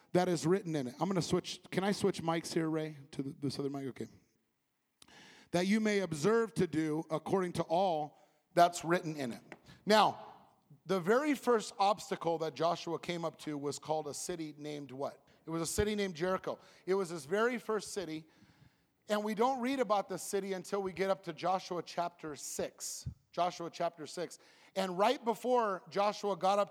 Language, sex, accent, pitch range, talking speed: English, male, American, 165-205 Hz, 190 wpm